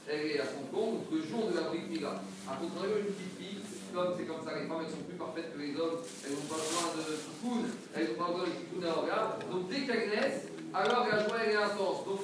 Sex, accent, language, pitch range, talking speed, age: male, French, French, 175-220 Hz, 275 wpm, 40-59